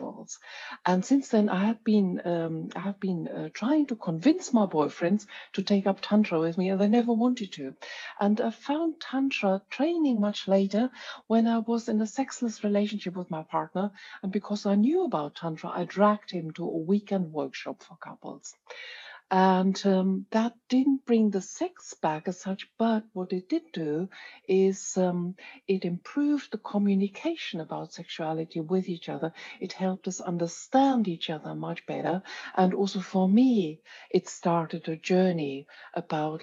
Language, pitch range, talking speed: English, 175-220 Hz, 170 wpm